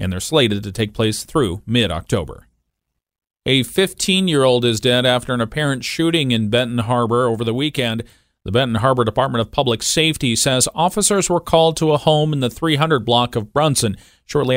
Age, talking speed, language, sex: 40-59, 175 wpm, English, male